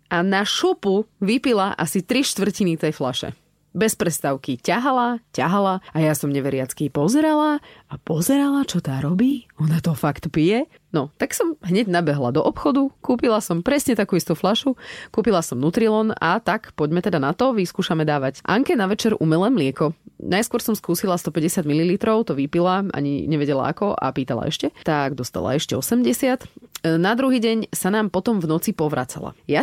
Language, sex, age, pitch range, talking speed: Slovak, female, 30-49, 150-220 Hz, 170 wpm